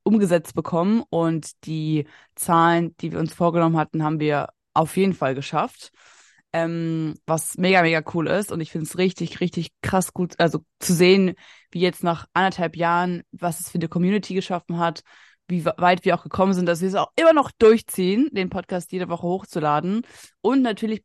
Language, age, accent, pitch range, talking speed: German, 20-39, German, 165-190 Hz, 185 wpm